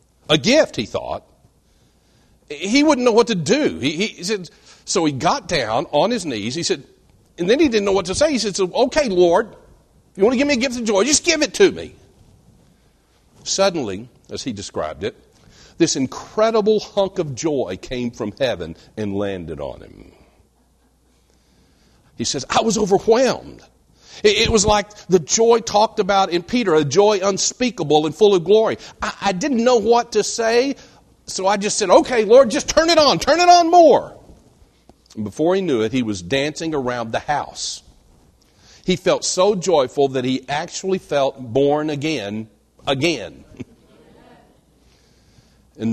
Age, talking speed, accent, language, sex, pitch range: 50-69, 170 wpm, American, English, male, 130-225 Hz